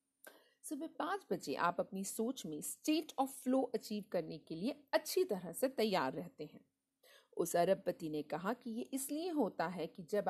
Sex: female